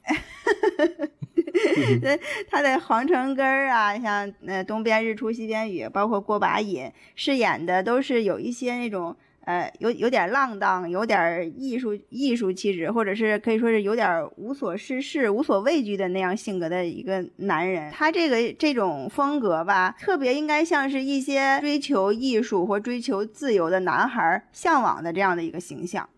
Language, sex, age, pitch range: Chinese, female, 20-39, 190-265 Hz